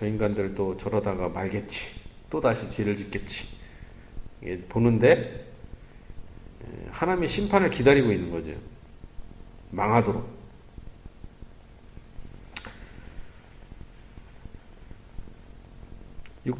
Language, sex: Korean, male